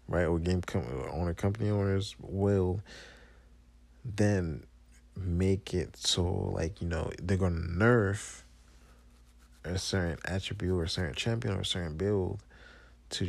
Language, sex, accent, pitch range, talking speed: English, male, American, 65-95 Hz, 135 wpm